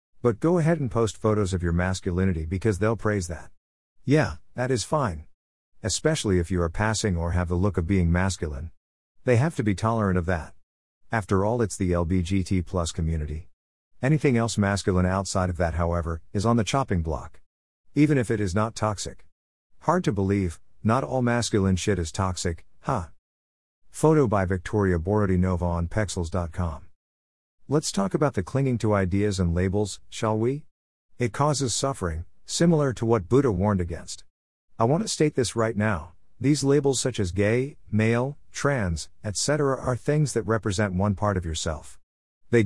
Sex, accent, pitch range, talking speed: male, American, 85-115 Hz, 170 wpm